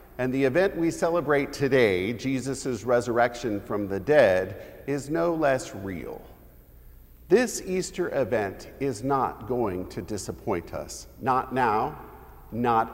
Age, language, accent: 50-69, English, American